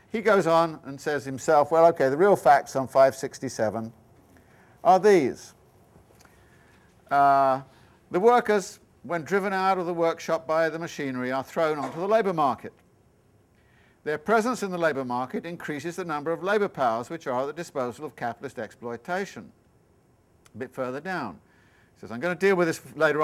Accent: British